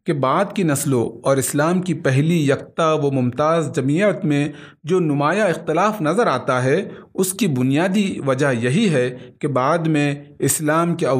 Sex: male